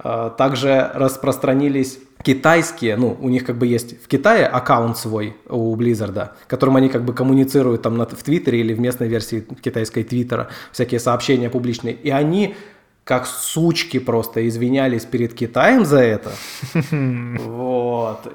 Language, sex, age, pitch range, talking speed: Russian, male, 20-39, 120-145 Hz, 145 wpm